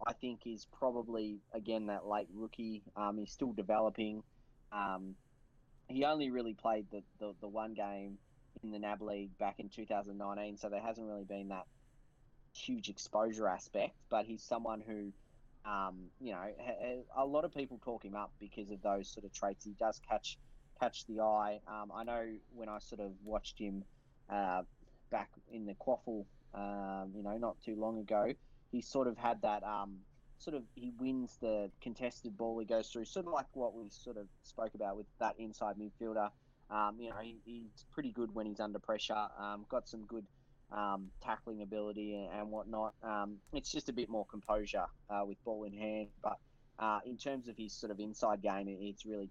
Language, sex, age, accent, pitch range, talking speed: English, male, 20-39, Australian, 105-120 Hz, 190 wpm